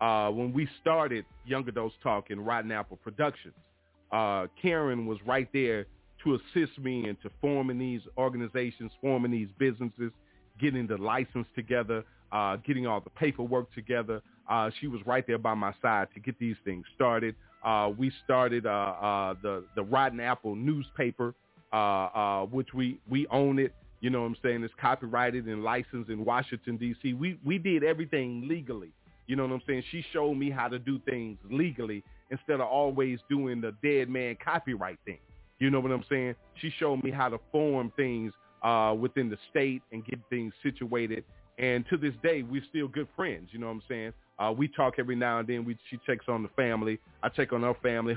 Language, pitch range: English, 110-135 Hz